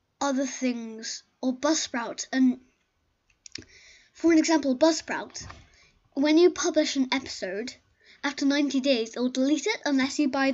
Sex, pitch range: female, 250-310 Hz